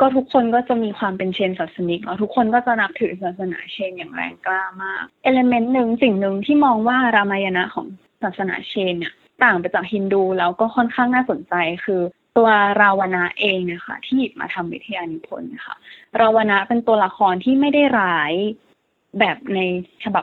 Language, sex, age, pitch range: Thai, female, 20-39, 190-250 Hz